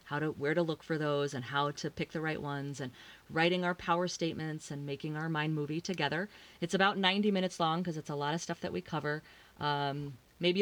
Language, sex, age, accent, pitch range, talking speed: English, female, 30-49, American, 140-175 Hz, 230 wpm